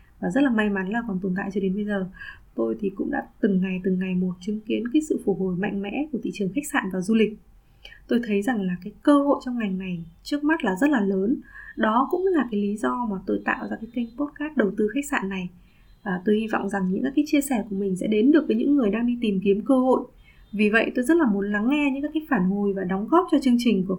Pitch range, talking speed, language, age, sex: 195-265 Hz, 285 wpm, Vietnamese, 20-39, female